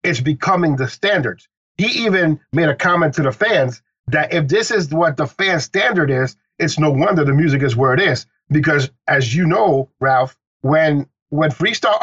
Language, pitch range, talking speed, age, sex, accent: English, 135-170 Hz, 190 wpm, 50-69, male, American